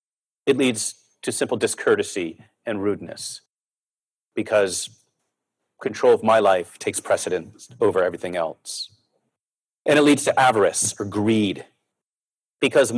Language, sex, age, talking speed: English, male, 40-59, 115 wpm